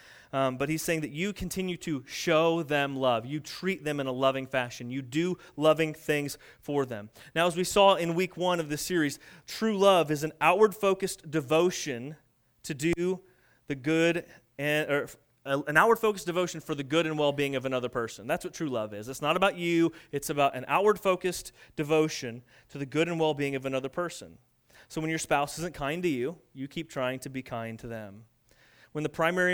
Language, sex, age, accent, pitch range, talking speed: English, male, 30-49, American, 135-180 Hz, 200 wpm